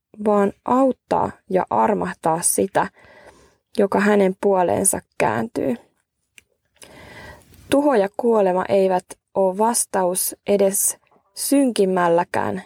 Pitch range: 195-230 Hz